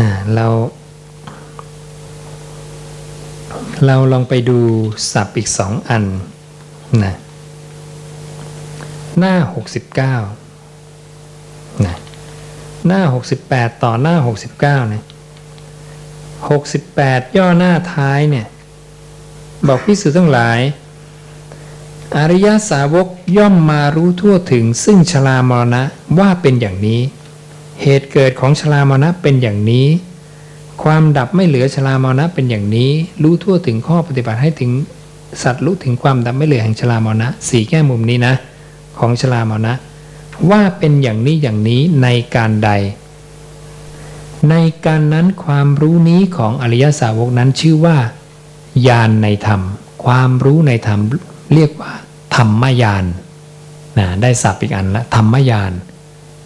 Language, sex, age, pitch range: English, male, 60-79, 125-150 Hz